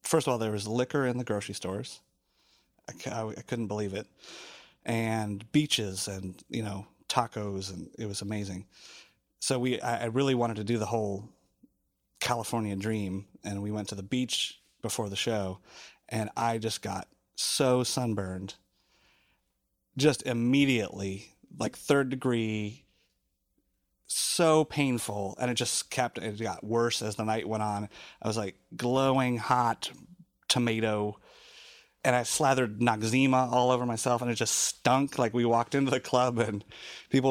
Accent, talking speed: American, 155 wpm